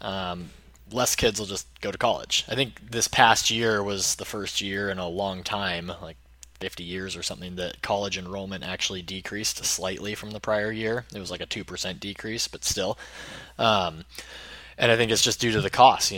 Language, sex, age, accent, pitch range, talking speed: English, male, 20-39, American, 90-100 Hz, 205 wpm